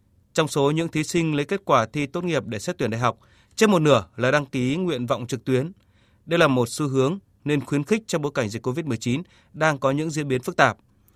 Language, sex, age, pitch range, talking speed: Vietnamese, male, 20-39, 115-160 Hz, 245 wpm